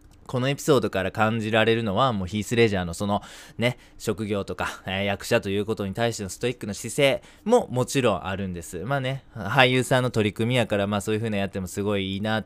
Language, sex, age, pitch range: Japanese, male, 20-39, 100-130 Hz